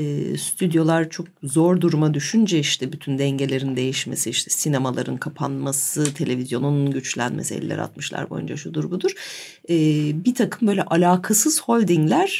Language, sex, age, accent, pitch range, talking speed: Turkish, female, 40-59, native, 145-200 Hz, 125 wpm